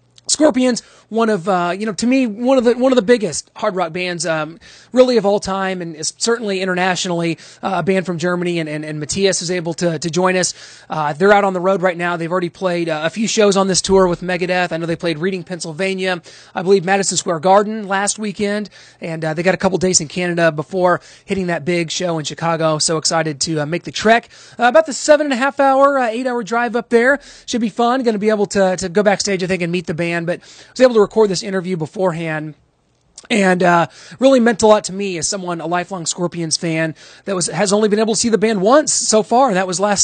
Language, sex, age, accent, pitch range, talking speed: English, male, 30-49, American, 170-210 Hz, 255 wpm